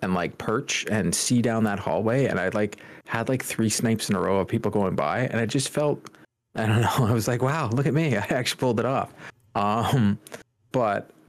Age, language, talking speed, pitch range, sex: 40-59, English, 230 wpm, 100-120 Hz, male